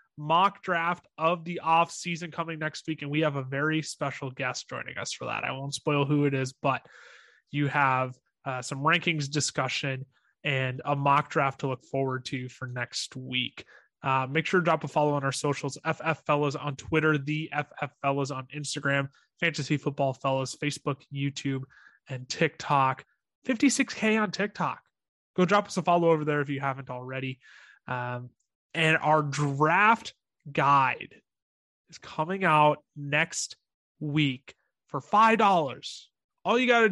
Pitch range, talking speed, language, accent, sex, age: 140-170 Hz, 165 wpm, English, American, male, 20-39